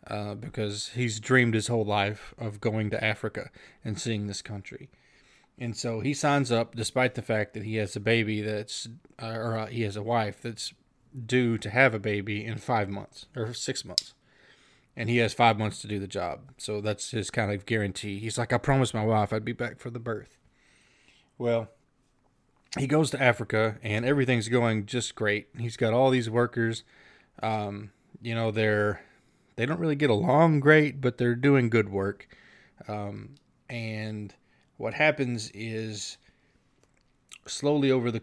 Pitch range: 105-120 Hz